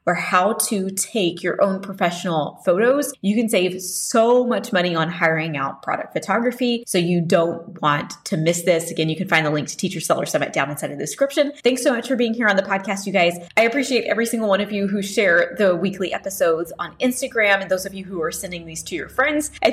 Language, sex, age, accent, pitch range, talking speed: English, female, 20-39, American, 185-240 Hz, 235 wpm